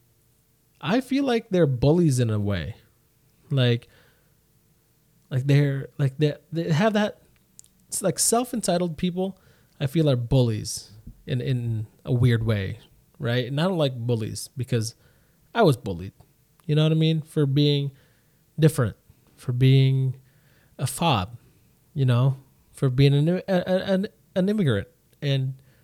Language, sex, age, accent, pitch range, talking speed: English, male, 20-39, American, 120-155 Hz, 140 wpm